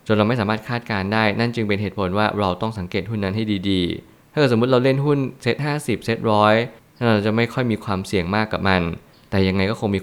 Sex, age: male, 20-39